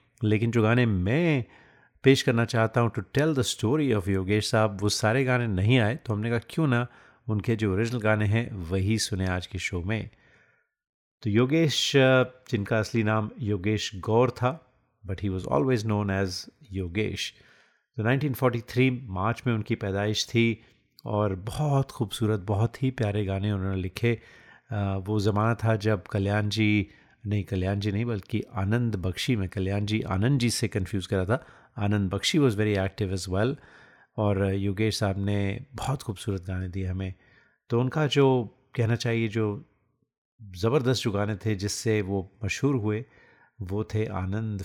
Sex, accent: male, native